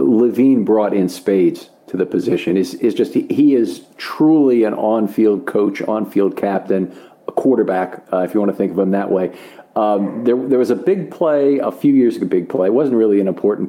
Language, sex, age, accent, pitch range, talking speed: English, male, 50-69, American, 100-130 Hz, 210 wpm